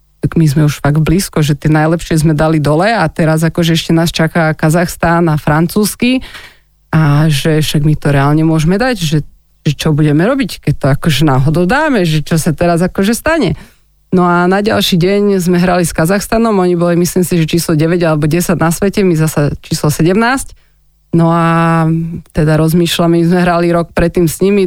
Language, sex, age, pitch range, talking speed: Slovak, female, 30-49, 160-175 Hz, 190 wpm